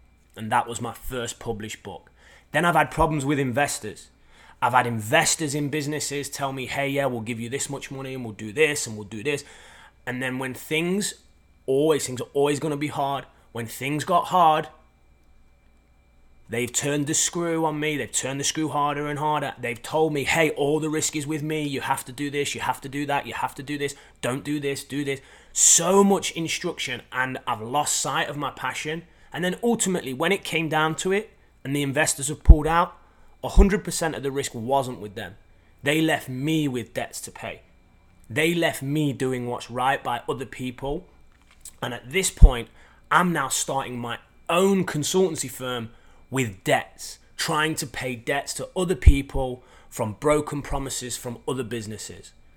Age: 20-39